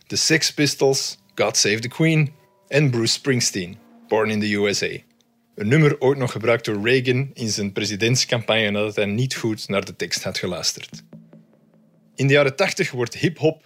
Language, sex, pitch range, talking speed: Dutch, male, 110-145 Hz, 170 wpm